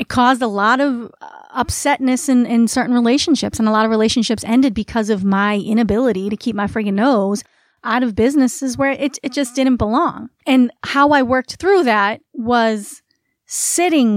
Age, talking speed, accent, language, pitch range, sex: 30-49, 180 wpm, American, English, 210-260 Hz, female